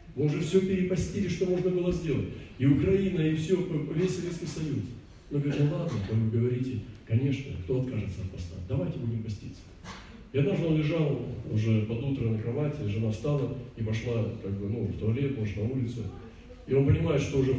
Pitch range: 110-160 Hz